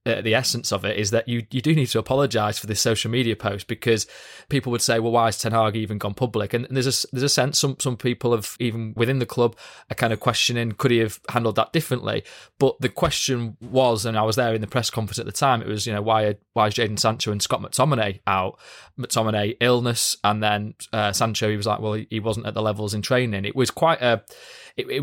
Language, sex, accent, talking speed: English, male, British, 250 wpm